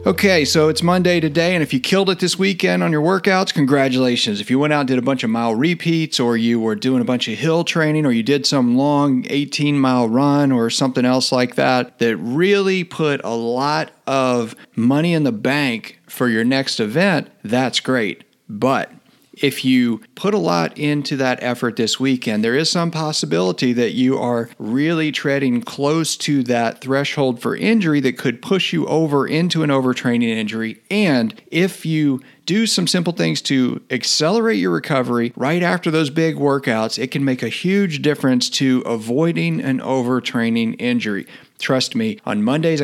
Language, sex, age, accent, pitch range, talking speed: English, male, 40-59, American, 120-160 Hz, 180 wpm